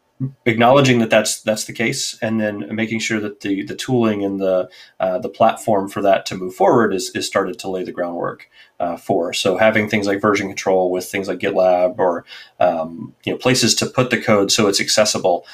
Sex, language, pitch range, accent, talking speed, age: male, English, 95-110 Hz, American, 210 wpm, 30-49